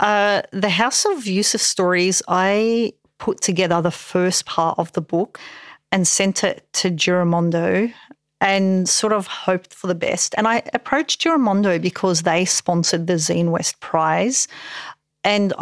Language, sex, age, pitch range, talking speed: English, female, 40-59, 175-205 Hz, 150 wpm